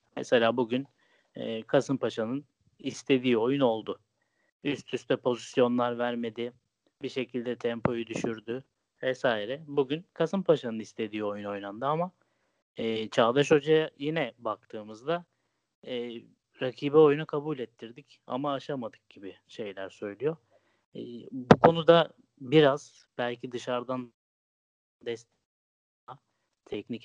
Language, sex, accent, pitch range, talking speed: Turkish, male, native, 110-130 Hz, 100 wpm